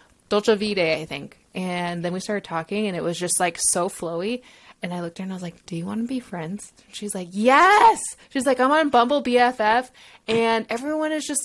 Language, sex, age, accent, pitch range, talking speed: English, female, 20-39, American, 185-260 Hz, 235 wpm